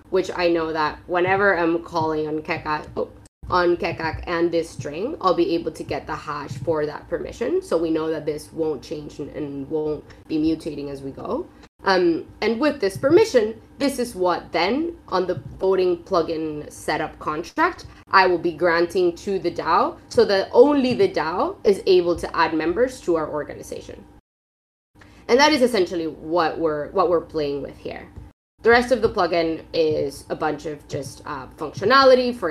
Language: English